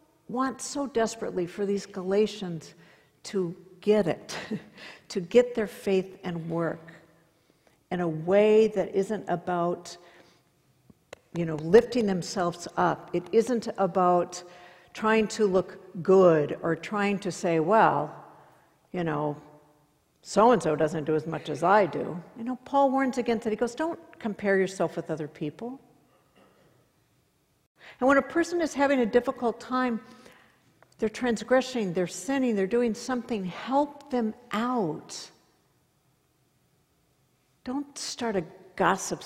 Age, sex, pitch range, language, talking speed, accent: 60-79, female, 175-245 Hz, English, 130 wpm, American